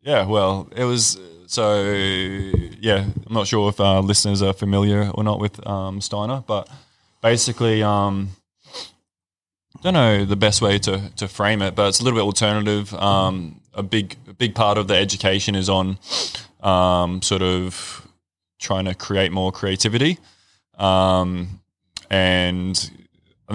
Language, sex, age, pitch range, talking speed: English, male, 20-39, 95-105 Hz, 155 wpm